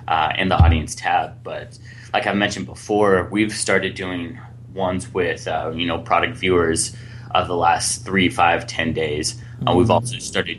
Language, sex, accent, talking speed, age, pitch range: English, male, American, 175 wpm, 20-39, 90-120 Hz